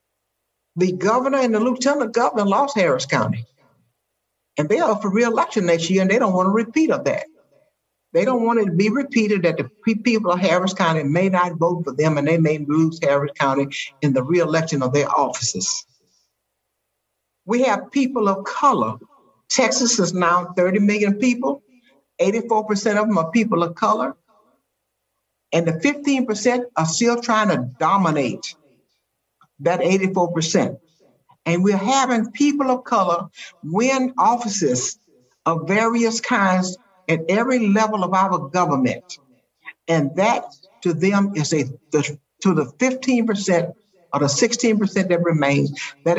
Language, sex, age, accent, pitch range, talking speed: English, male, 60-79, American, 160-225 Hz, 150 wpm